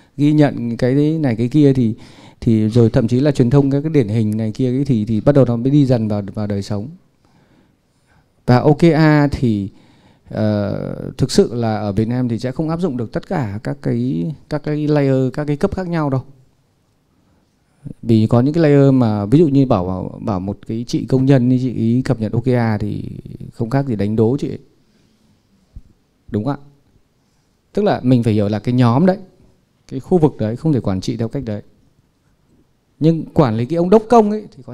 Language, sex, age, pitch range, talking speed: Vietnamese, male, 20-39, 115-145 Hz, 210 wpm